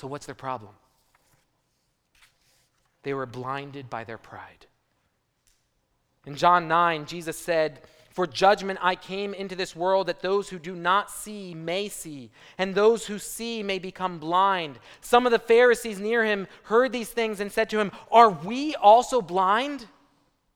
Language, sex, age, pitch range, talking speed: English, male, 30-49, 155-225 Hz, 160 wpm